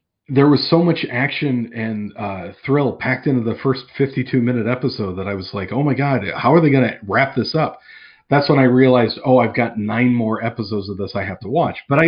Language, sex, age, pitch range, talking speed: English, male, 40-59, 110-135 Hz, 235 wpm